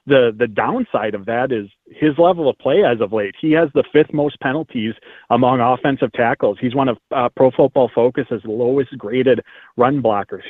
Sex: male